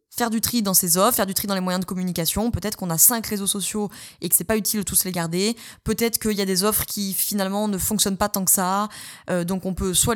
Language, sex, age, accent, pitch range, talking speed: French, female, 20-39, French, 175-225 Hz, 285 wpm